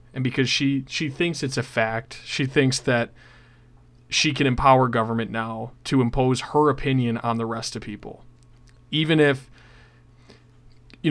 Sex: male